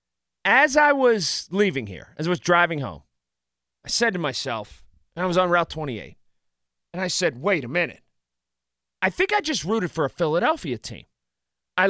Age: 30-49